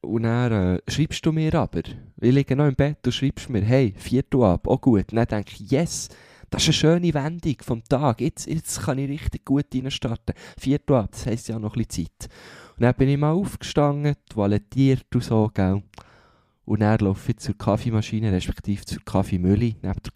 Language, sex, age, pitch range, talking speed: German, male, 20-39, 100-130 Hz, 210 wpm